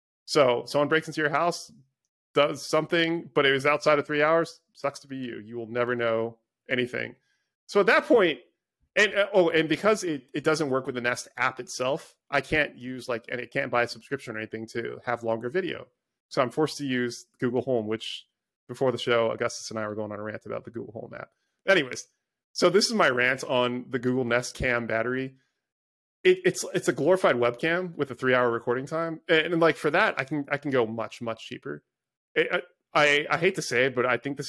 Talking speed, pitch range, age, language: 225 wpm, 115-145 Hz, 30-49, English